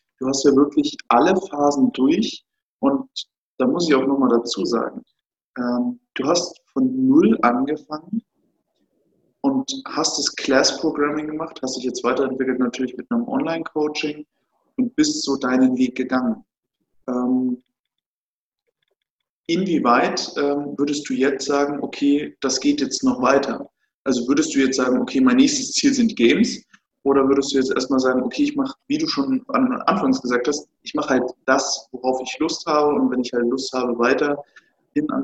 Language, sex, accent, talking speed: German, male, German, 160 wpm